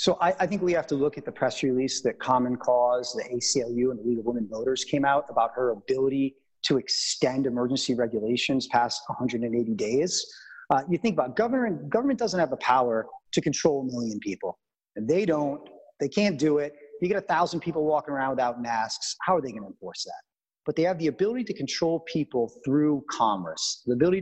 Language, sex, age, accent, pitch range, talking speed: English, male, 30-49, American, 120-155 Hz, 210 wpm